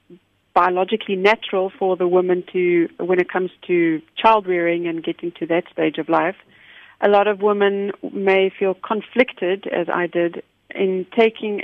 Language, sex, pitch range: English, female, 180-205 Hz